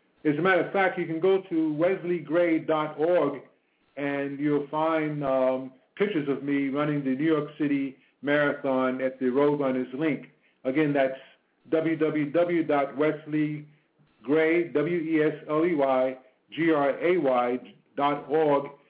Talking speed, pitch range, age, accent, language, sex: 95 wpm, 140-165 Hz, 50-69, American, English, male